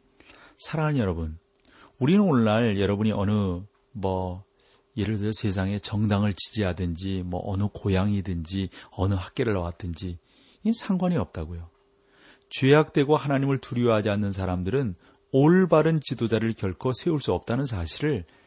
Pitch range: 95-135 Hz